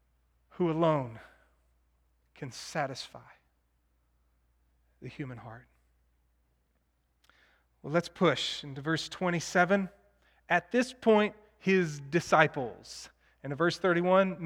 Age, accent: 30-49, American